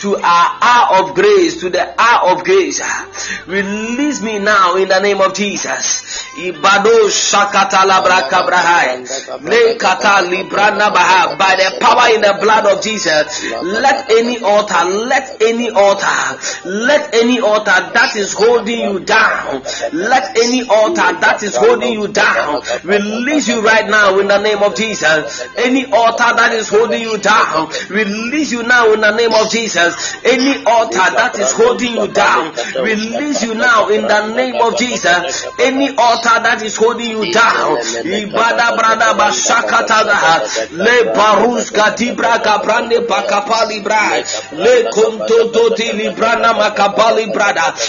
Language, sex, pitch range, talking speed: English, male, 200-245 Hz, 135 wpm